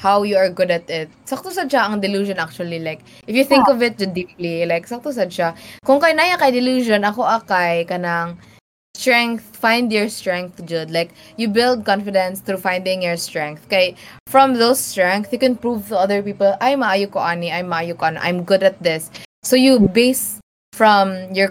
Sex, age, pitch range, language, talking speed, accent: female, 20-39, 175-210 Hz, English, 180 wpm, Filipino